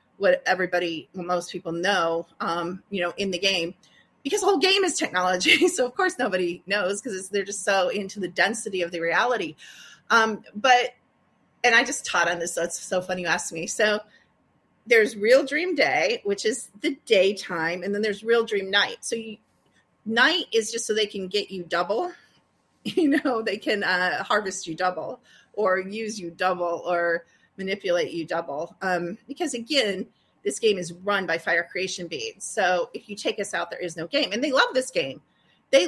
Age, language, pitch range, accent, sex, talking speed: 30-49, English, 185-270 Hz, American, female, 195 wpm